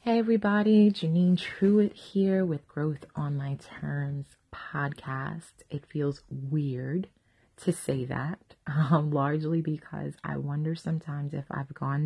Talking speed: 130 wpm